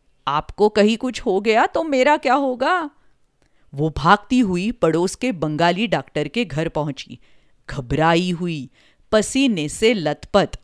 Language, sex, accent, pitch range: Hindi, female, native, 155-240 Hz